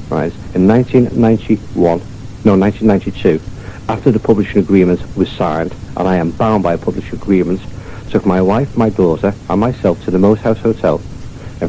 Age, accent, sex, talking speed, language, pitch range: 60-79, British, male, 175 wpm, English, 95-120 Hz